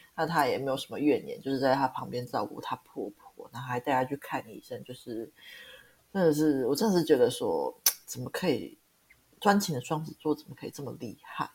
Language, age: Chinese, 30-49